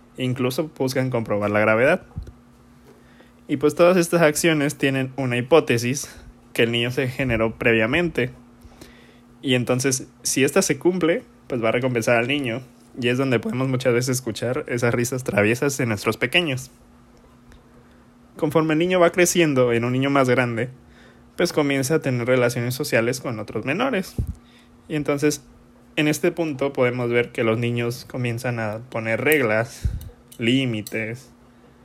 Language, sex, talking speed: Spanish, male, 145 wpm